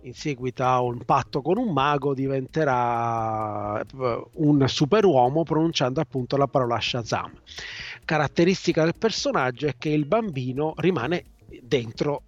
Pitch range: 120-150 Hz